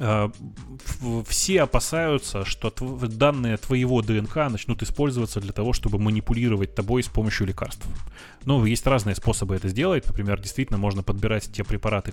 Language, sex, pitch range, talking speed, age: Russian, male, 100-120 Hz, 145 wpm, 20-39